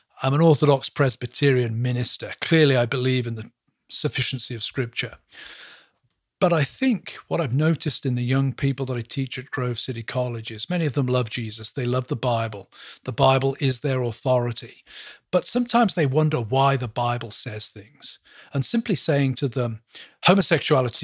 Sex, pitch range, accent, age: male, 125-160 Hz, British, 40-59